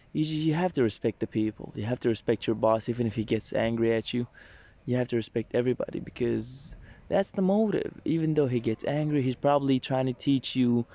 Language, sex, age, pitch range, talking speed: English, male, 20-39, 115-150 Hz, 215 wpm